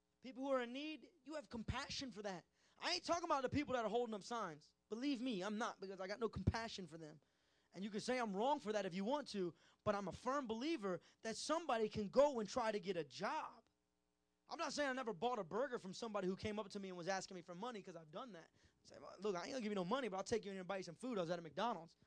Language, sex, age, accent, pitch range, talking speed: English, male, 20-39, American, 175-245 Hz, 295 wpm